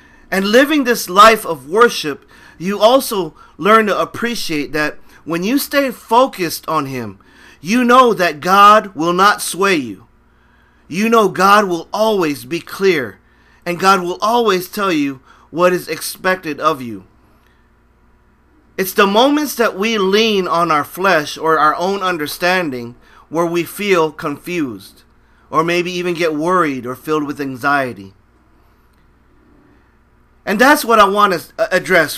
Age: 40-59